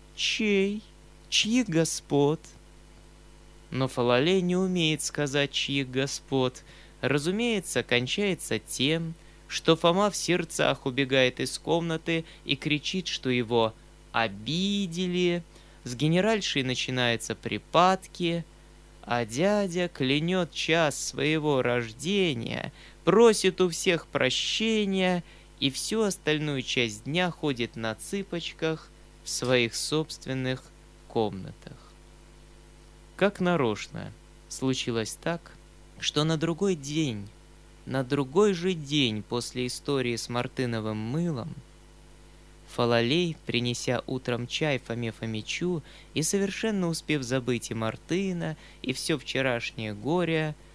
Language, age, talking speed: Russian, 20-39, 100 wpm